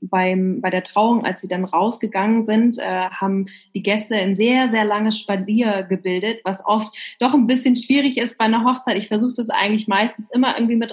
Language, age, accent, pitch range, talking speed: German, 20-39, German, 195-225 Hz, 205 wpm